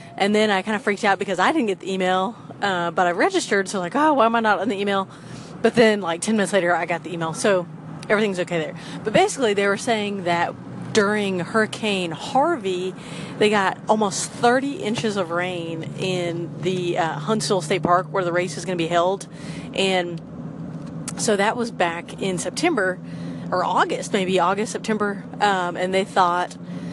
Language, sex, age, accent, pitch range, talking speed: English, female, 30-49, American, 180-215 Hz, 195 wpm